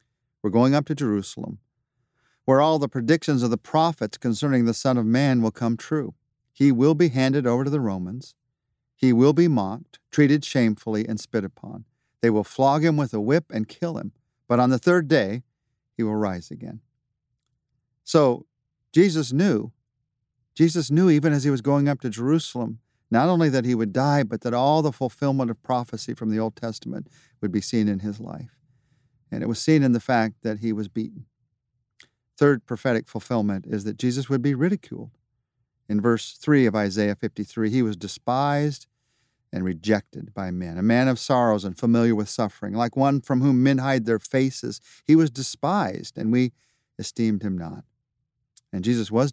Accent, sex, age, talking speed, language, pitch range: American, male, 50-69, 185 wpm, English, 115-135 Hz